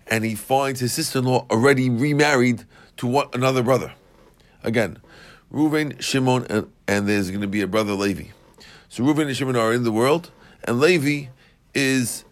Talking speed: 165 wpm